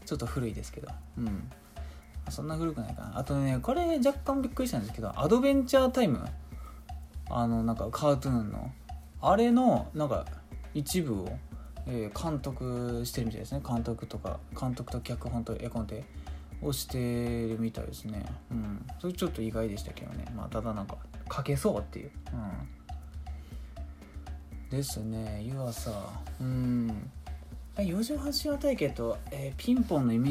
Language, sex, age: Japanese, male, 20-39